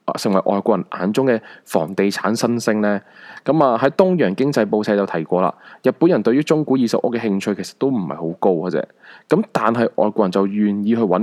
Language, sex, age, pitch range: Chinese, male, 20-39, 100-135 Hz